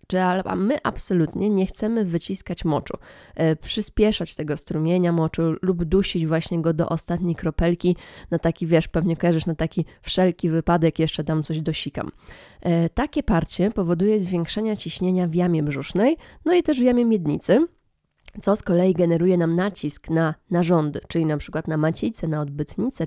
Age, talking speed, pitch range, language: 20-39, 160 wpm, 165-200 Hz, Polish